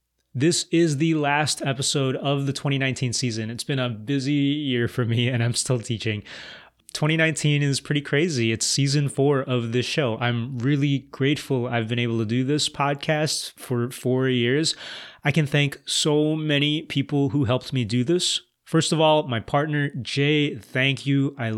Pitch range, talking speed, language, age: 120-150 Hz, 175 wpm, English, 20-39